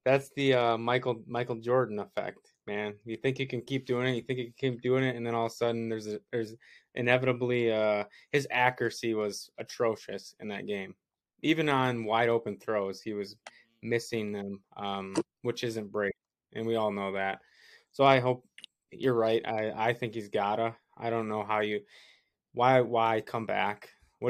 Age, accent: 20-39, American